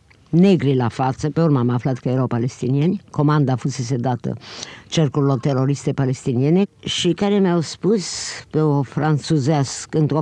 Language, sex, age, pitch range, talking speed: Romanian, female, 50-69, 135-175 Hz, 155 wpm